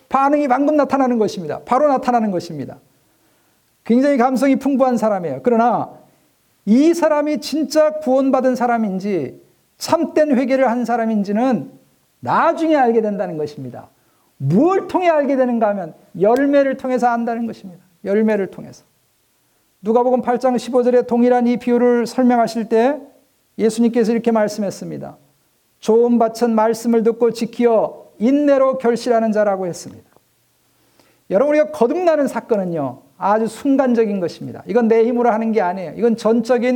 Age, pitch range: 50-69, 220-265 Hz